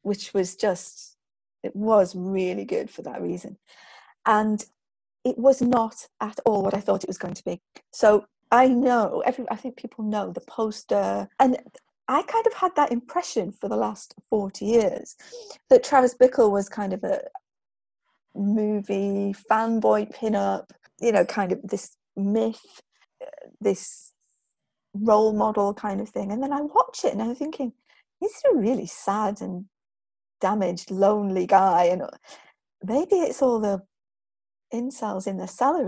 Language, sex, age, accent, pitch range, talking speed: English, female, 40-59, British, 195-255 Hz, 155 wpm